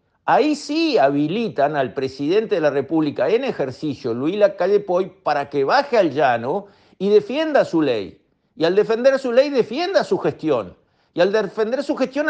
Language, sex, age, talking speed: Spanish, male, 50-69, 170 wpm